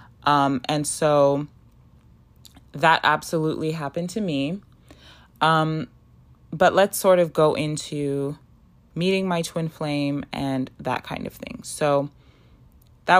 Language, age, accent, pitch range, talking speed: English, 20-39, American, 140-170 Hz, 120 wpm